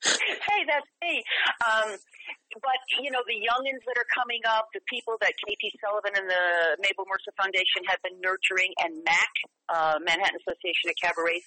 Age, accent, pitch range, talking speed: 40-59, American, 180-240 Hz, 175 wpm